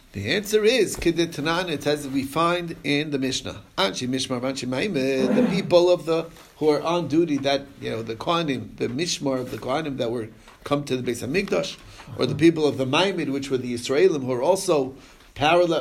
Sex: male